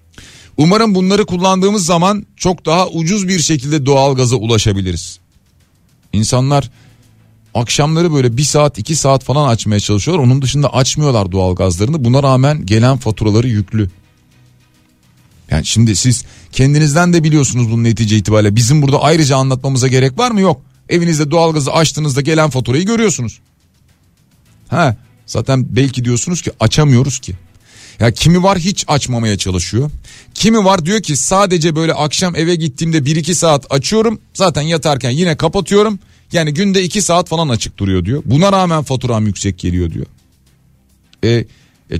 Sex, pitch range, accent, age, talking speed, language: male, 115-160 Hz, native, 40-59, 145 wpm, Turkish